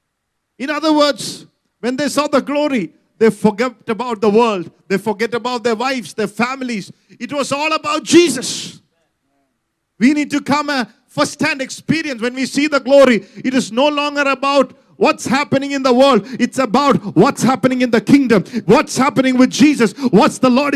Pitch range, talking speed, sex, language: 225-280 Hz, 175 wpm, male, English